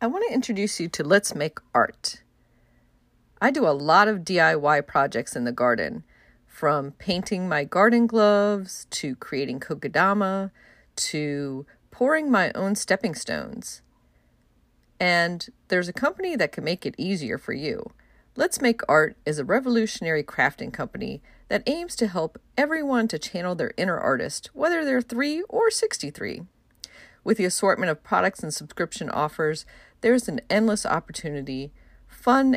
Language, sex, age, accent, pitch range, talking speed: English, female, 40-59, American, 150-230 Hz, 145 wpm